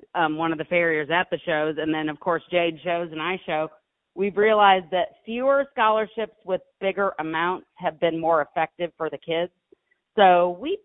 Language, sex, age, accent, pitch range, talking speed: English, female, 40-59, American, 155-195 Hz, 190 wpm